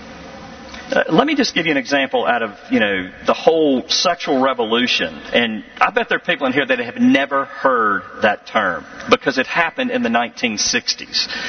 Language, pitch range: English, 190-250 Hz